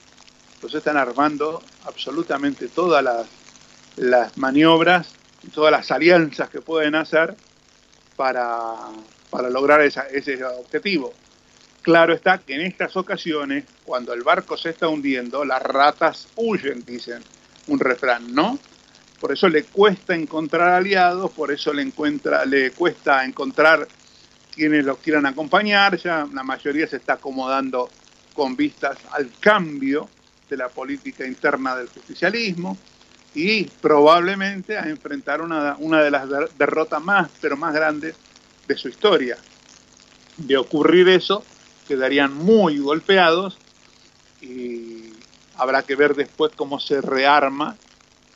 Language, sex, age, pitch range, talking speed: Spanish, male, 70-89, 135-175 Hz, 130 wpm